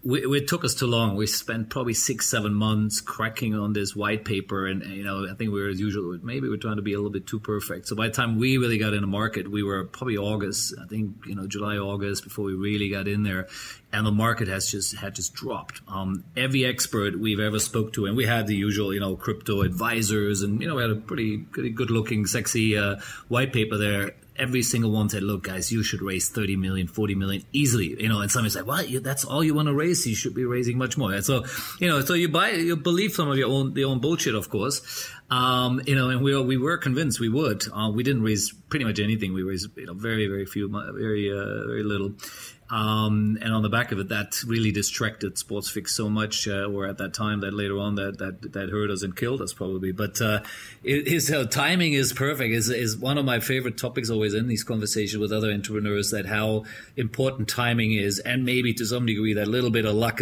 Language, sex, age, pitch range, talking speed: English, male, 30-49, 105-125 Hz, 250 wpm